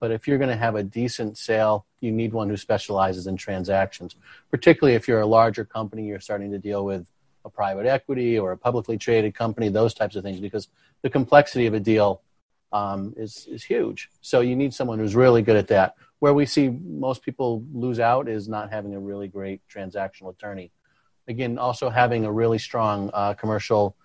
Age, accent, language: 40-59, American, English